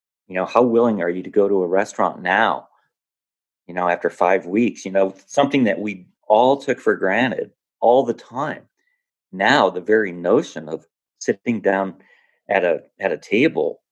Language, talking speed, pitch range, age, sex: English, 175 wpm, 90-135 Hz, 40-59, male